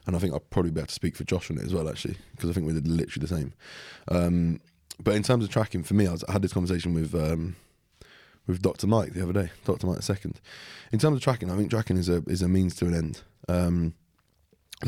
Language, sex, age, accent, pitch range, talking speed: English, male, 20-39, British, 85-100 Hz, 265 wpm